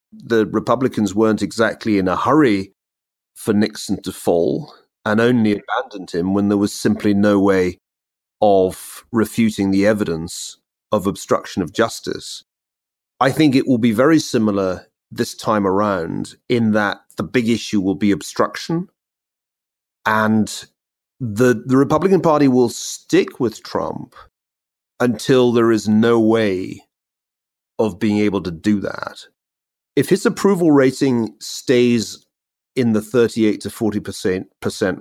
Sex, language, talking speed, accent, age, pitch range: male, English, 130 wpm, British, 40-59, 95-130 Hz